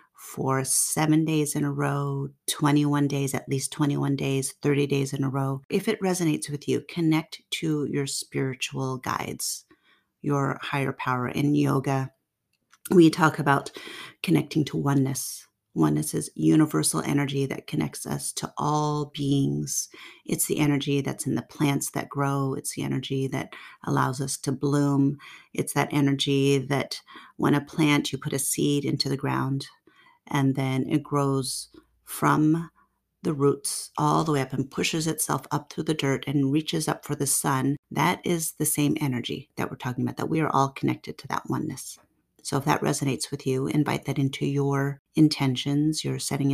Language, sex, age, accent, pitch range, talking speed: English, female, 40-59, American, 135-150 Hz, 170 wpm